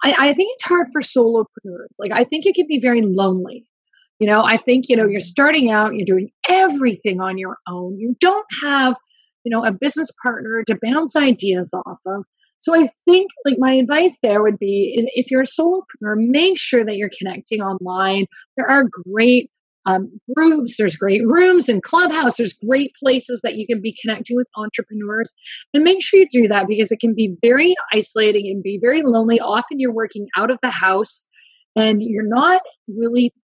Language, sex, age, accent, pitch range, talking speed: English, female, 30-49, American, 200-265 Hz, 195 wpm